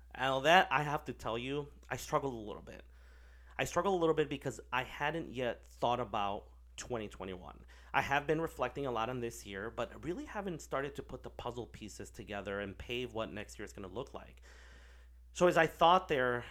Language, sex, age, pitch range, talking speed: English, male, 30-49, 90-135 Hz, 220 wpm